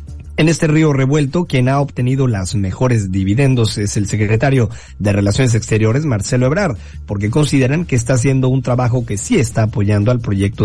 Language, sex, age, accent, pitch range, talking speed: Spanish, male, 40-59, Mexican, 105-140 Hz, 175 wpm